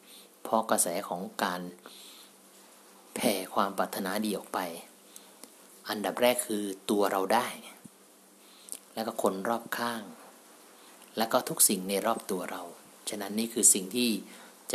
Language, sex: Thai, male